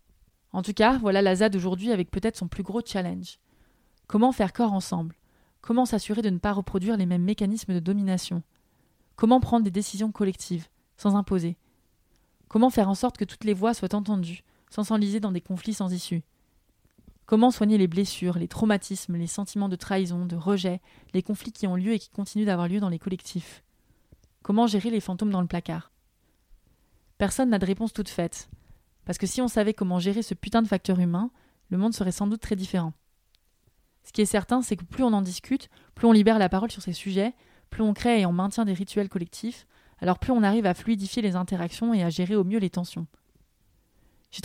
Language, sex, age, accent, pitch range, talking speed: French, female, 20-39, French, 185-215 Hz, 205 wpm